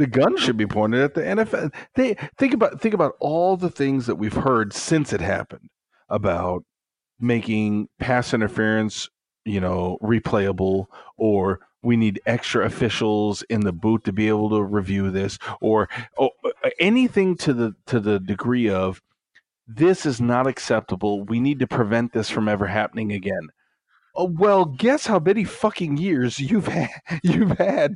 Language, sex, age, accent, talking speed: English, male, 40-59, American, 160 wpm